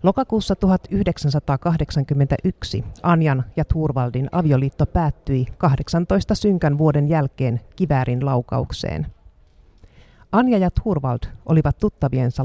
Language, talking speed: Finnish, 85 wpm